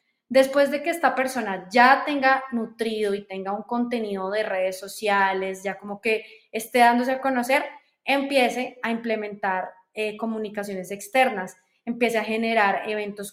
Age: 20-39